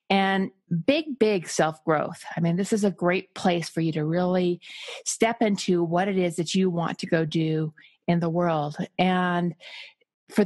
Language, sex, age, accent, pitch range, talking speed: English, female, 30-49, American, 160-200 Hz, 180 wpm